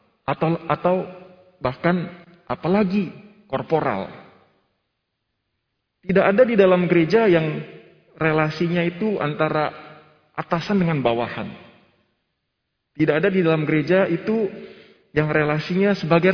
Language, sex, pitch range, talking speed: Indonesian, male, 140-195 Hz, 95 wpm